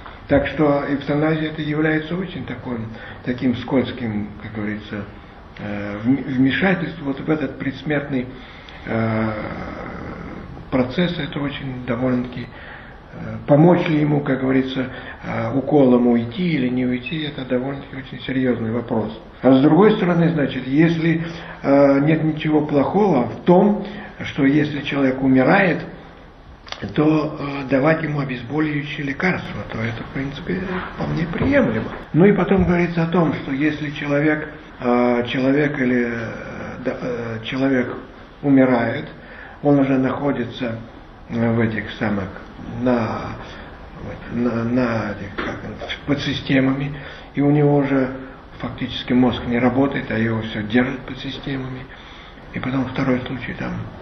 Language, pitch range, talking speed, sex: English, 120-145 Hz, 120 wpm, male